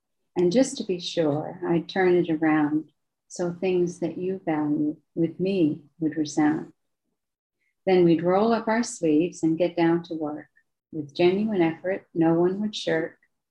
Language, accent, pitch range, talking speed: English, American, 160-190 Hz, 160 wpm